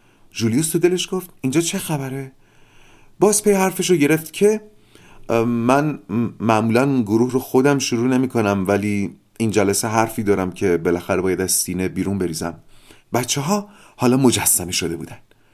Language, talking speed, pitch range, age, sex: Persian, 150 wpm, 105-160 Hz, 30-49, male